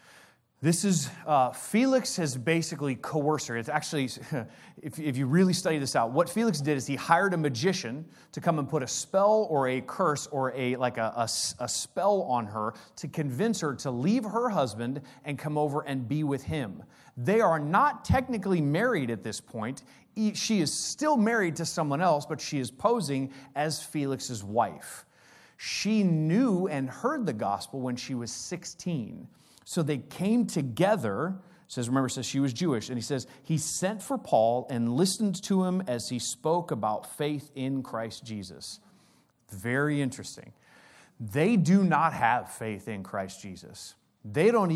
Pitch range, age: 125-180 Hz, 30-49